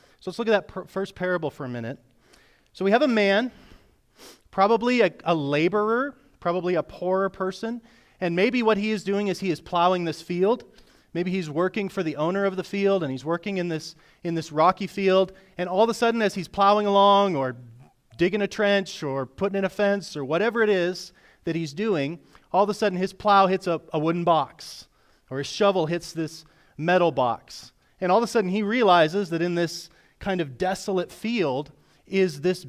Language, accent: English, American